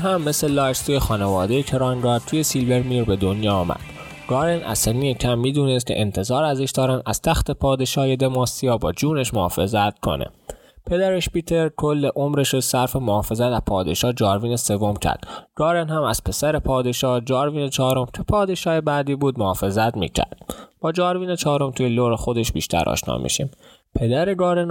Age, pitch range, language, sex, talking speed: 20-39, 110-150 Hz, Persian, male, 150 wpm